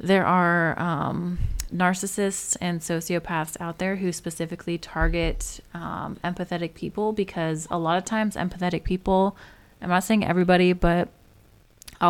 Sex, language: female, English